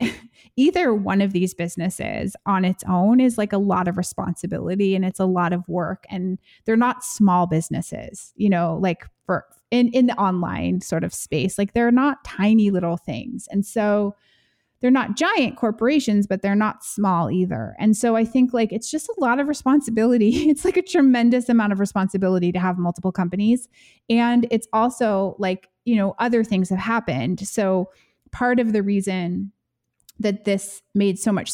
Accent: American